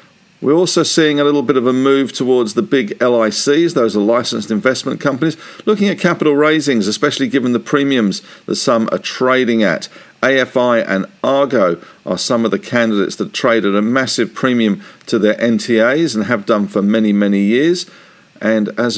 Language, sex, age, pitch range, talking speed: English, male, 50-69, 115-150 Hz, 180 wpm